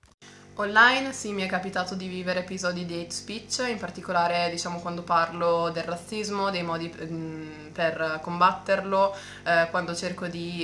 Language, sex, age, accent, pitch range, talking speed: Italian, female, 20-39, native, 165-185 Hz, 145 wpm